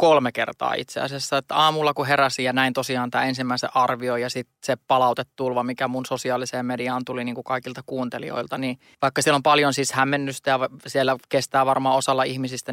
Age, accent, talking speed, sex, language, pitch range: 20-39, native, 190 wpm, male, Finnish, 125-140 Hz